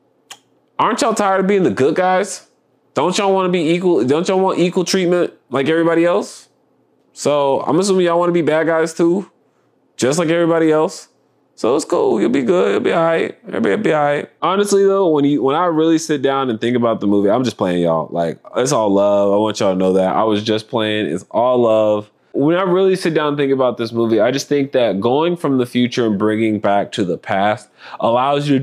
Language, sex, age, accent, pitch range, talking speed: English, male, 20-39, American, 110-170 Hz, 225 wpm